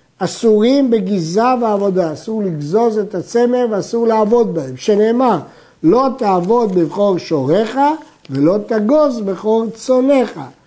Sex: male